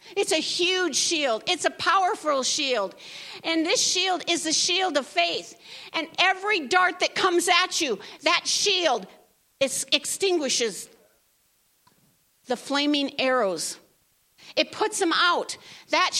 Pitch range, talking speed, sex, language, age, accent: 275-375 Hz, 125 wpm, female, English, 50-69, American